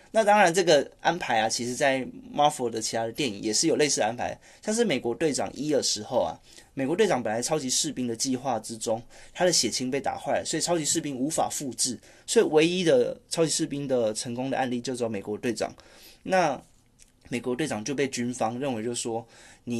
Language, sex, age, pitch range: Chinese, male, 20-39, 115-140 Hz